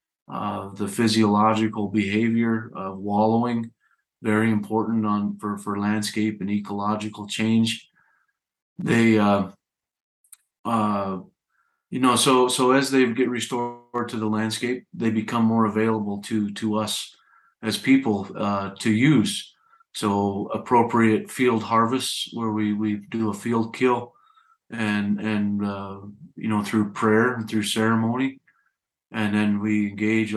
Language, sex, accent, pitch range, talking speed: English, male, American, 105-115 Hz, 135 wpm